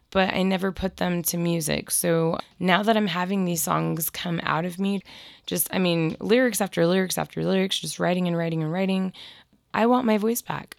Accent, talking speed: American, 205 wpm